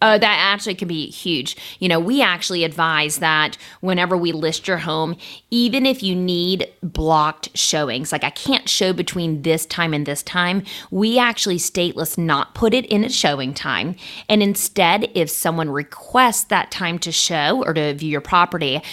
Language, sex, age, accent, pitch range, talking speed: English, female, 30-49, American, 160-205 Hz, 180 wpm